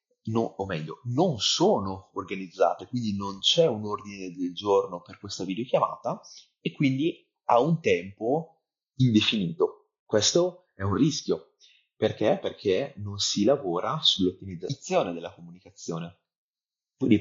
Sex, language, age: male, Italian, 30-49